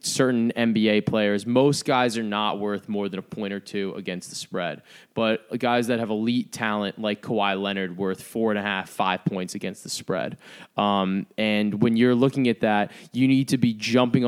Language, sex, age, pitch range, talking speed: English, male, 20-39, 100-125 Hz, 200 wpm